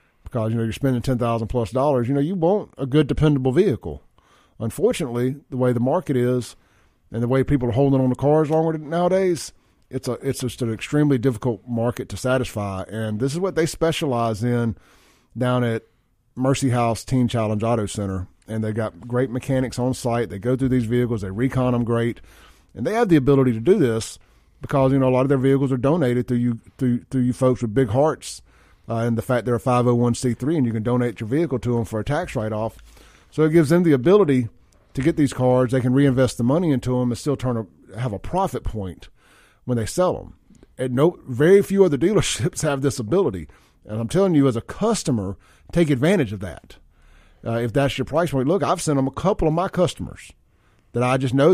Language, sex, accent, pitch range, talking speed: English, male, American, 115-140 Hz, 220 wpm